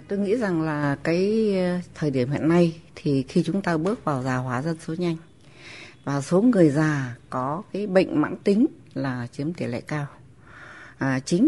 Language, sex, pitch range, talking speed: Vietnamese, female, 135-175 Hz, 185 wpm